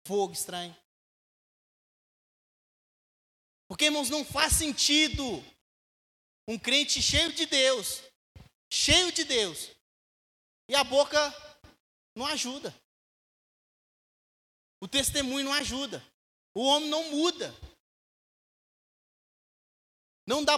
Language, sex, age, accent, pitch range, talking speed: Portuguese, male, 20-39, Brazilian, 230-290 Hz, 85 wpm